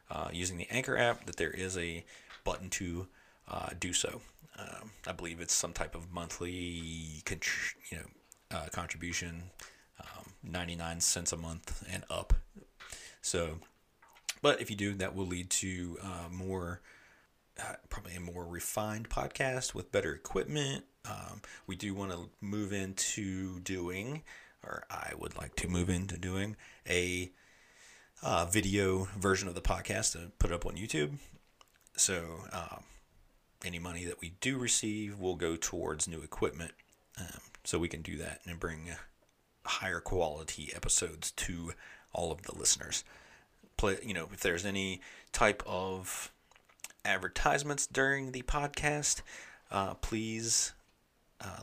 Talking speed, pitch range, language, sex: 150 wpm, 85-105 Hz, English, male